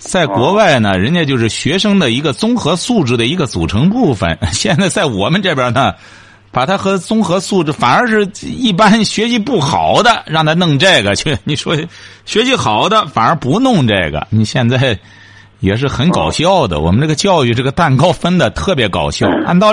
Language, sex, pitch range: Chinese, male, 120-200 Hz